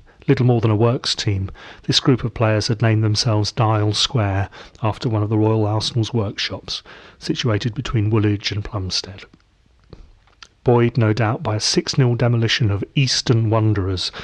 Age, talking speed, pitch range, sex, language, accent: 40-59, 160 wpm, 105-125 Hz, male, English, British